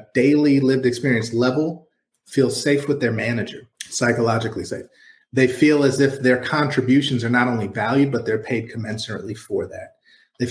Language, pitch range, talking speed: English, 115-135 Hz, 160 wpm